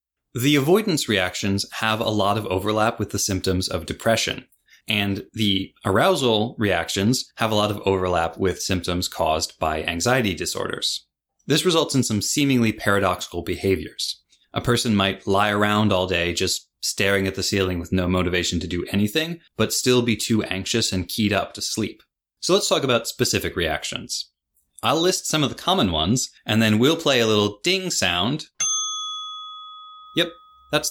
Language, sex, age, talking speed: English, male, 20-39, 165 wpm